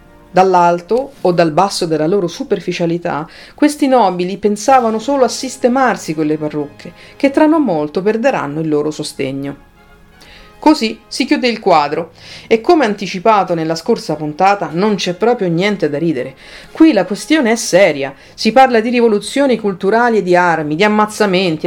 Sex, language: female, Italian